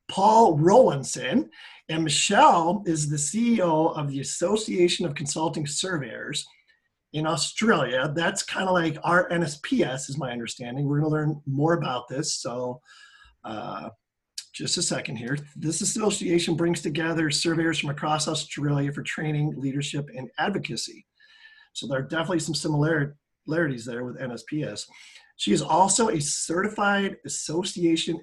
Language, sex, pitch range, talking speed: English, male, 140-175 Hz, 135 wpm